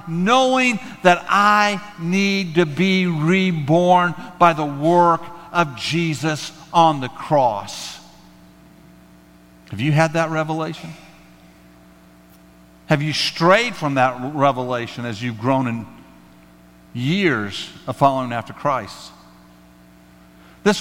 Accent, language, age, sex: American, English, 50-69, male